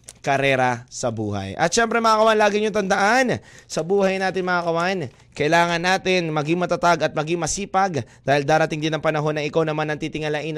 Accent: native